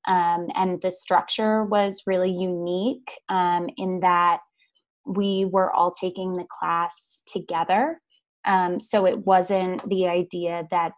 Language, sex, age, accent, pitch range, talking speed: English, female, 20-39, American, 175-195 Hz, 130 wpm